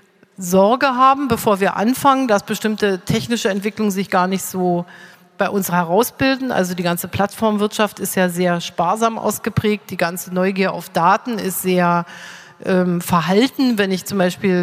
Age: 40-59